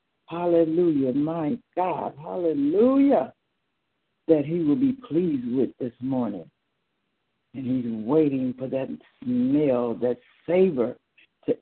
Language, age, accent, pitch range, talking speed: English, 60-79, American, 135-170 Hz, 110 wpm